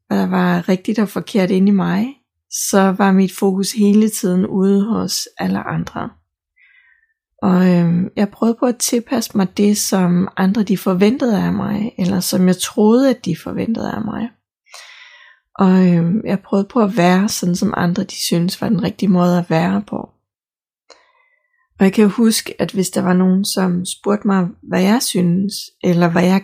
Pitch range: 185-225 Hz